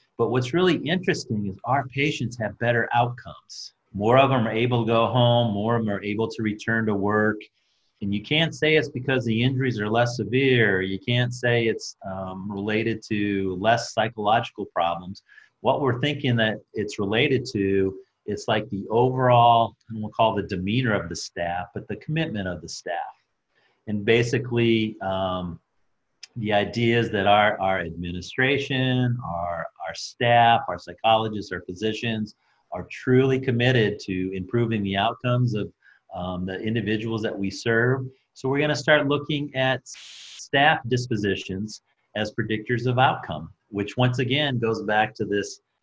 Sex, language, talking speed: male, English, 160 wpm